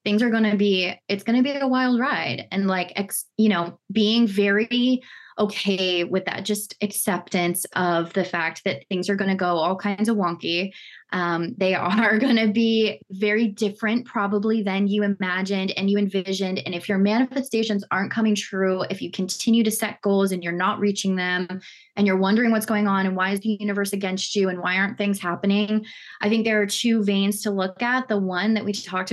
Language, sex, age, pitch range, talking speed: English, female, 20-39, 195-225 Hz, 210 wpm